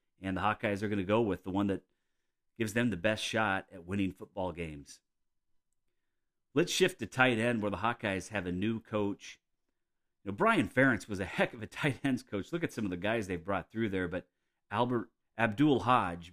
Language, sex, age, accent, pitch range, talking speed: English, male, 40-59, American, 90-115 Hz, 215 wpm